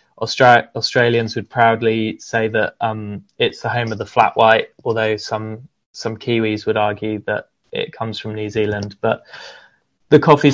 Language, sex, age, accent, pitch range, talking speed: English, male, 20-39, British, 110-120 Hz, 160 wpm